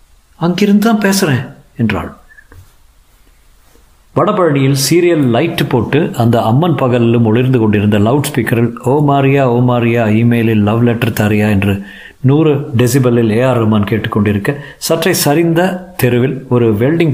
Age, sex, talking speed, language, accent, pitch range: 50-69, male, 110 wpm, Tamil, native, 90-130 Hz